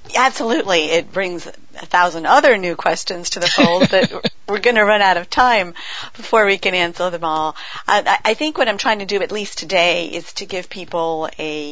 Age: 40-59